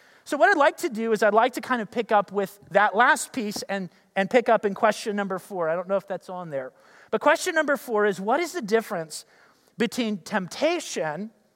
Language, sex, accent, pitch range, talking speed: English, male, American, 205-270 Hz, 230 wpm